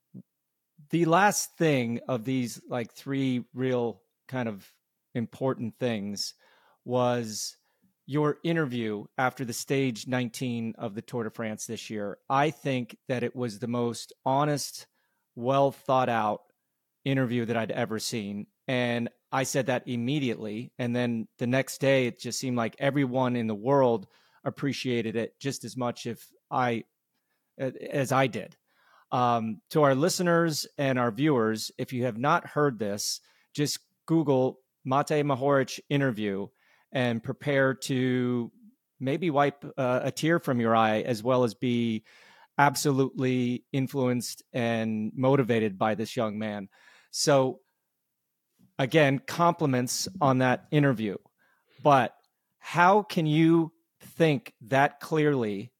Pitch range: 120-140 Hz